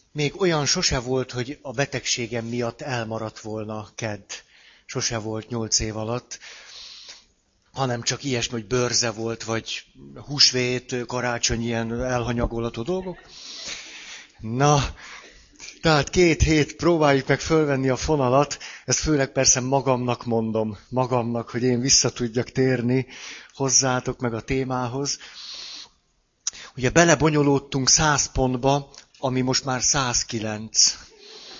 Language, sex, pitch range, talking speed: Hungarian, male, 120-140 Hz, 110 wpm